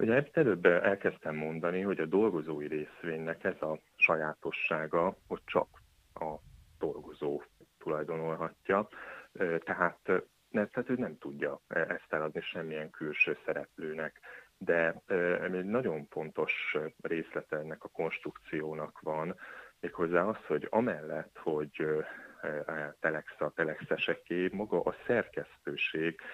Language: Hungarian